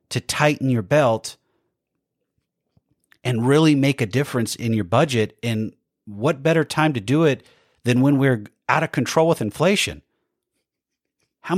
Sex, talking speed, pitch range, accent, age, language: male, 145 wpm, 110-150 Hz, American, 40-59, English